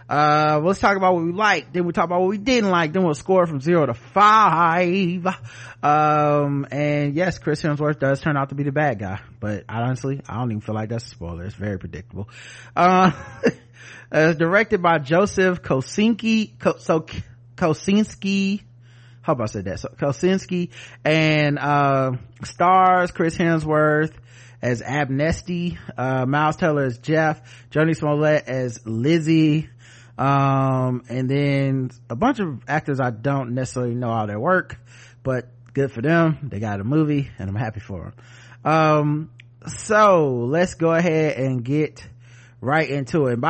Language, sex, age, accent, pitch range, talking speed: English, male, 30-49, American, 120-160 Hz, 160 wpm